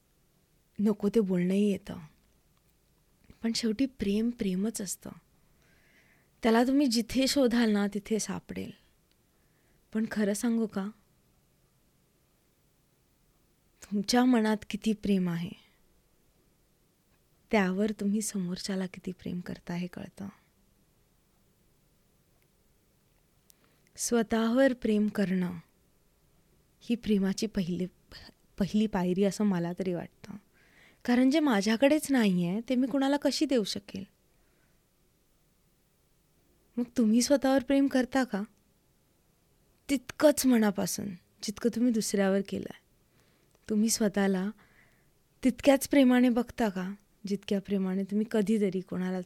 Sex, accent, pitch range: female, native, 195-235 Hz